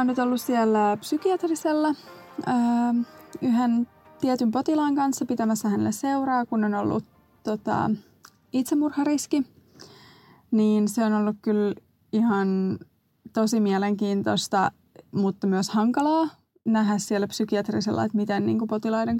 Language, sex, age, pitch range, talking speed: Finnish, female, 20-39, 205-260 Hz, 115 wpm